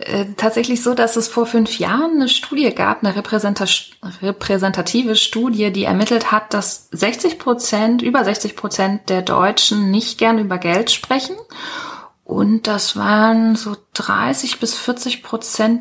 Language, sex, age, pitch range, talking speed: German, female, 30-49, 200-240 Hz, 140 wpm